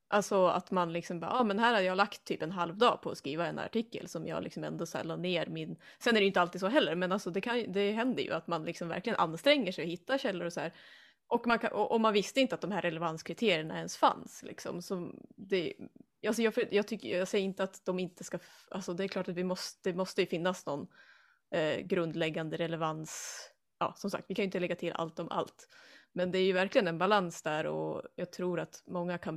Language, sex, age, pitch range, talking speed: Swedish, female, 20-39, 175-225 Hz, 245 wpm